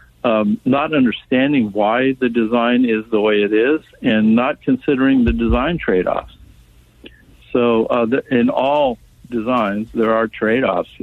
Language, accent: English, American